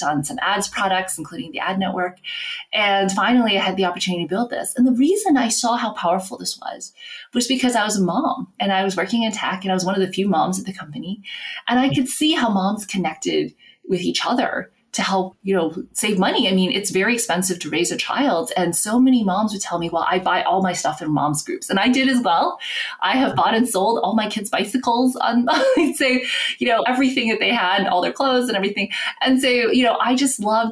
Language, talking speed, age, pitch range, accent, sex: English, 240 wpm, 20-39, 185-250 Hz, American, female